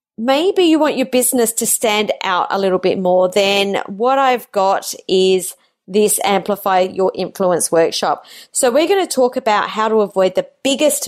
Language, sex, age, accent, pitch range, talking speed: English, female, 30-49, Australian, 195-255 Hz, 180 wpm